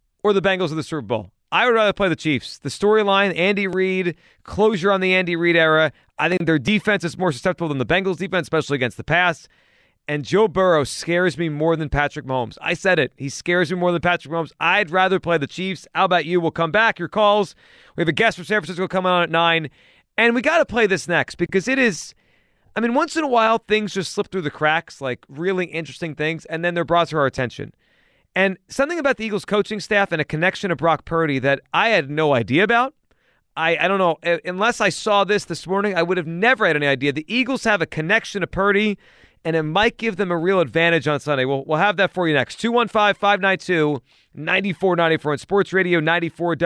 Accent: American